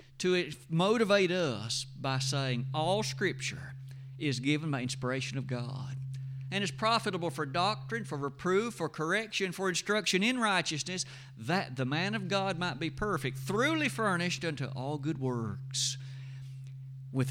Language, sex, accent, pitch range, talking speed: English, male, American, 135-180 Hz, 140 wpm